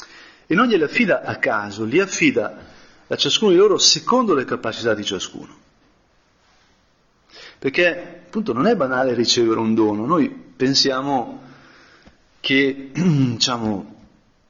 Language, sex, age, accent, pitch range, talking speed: Italian, male, 40-59, native, 120-175 Hz, 120 wpm